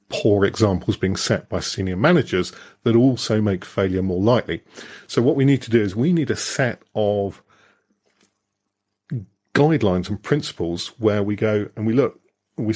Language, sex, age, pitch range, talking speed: English, male, 40-59, 100-130 Hz, 165 wpm